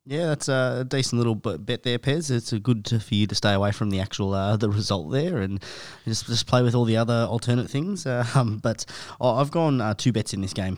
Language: English